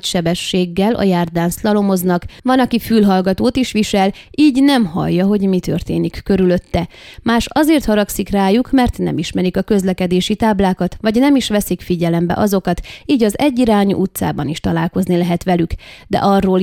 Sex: female